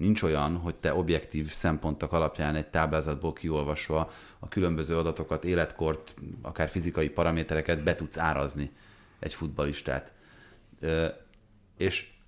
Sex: male